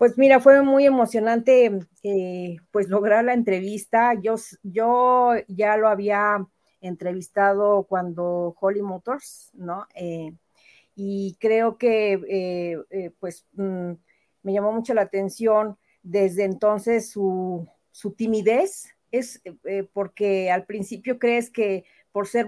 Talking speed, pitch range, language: 125 wpm, 190-230 Hz, Spanish